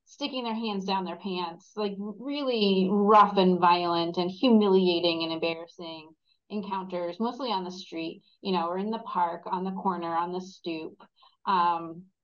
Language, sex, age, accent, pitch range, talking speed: English, female, 30-49, American, 175-210 Hz, 160 wpm